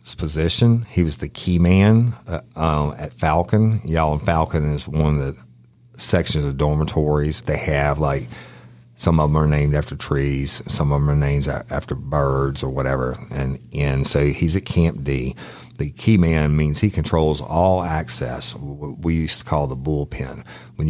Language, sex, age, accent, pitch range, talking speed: English, male, 50-69, American, 70-90 Hz, 180 wpm